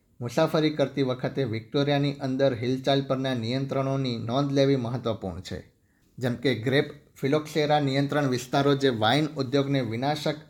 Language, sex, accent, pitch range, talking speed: Gujarati, male, native, 115-140 Hz, 120 wpm